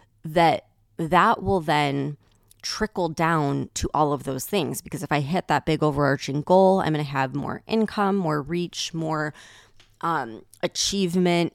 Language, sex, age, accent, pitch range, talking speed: English, female, 20-39, American, 140-185 Hz, 155 wpm